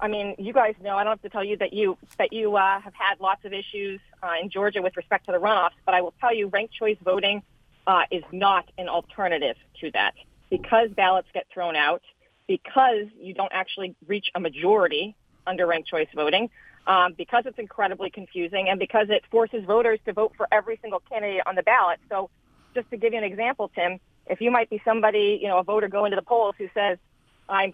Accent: American